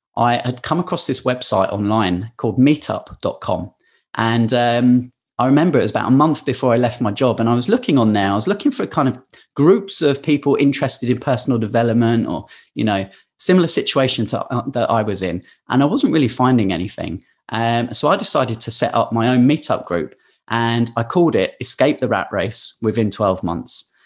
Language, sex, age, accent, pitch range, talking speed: English, male, 30-49, British, 110-135 Hz, 200 wpm